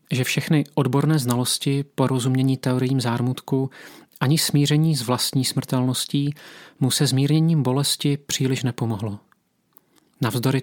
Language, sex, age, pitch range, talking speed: Czech, male, 40-59, 125-150 Hz, 105 wpm